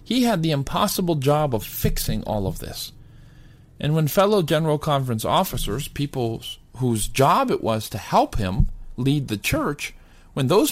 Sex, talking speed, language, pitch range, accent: male, 160 wpm, English, 110-155 Hz, American